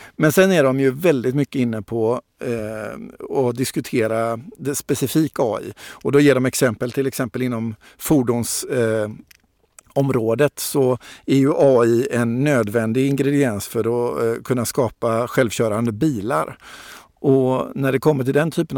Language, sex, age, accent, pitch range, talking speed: Swedish, male, 50-69, native, 115-140 Hz, 145 wpm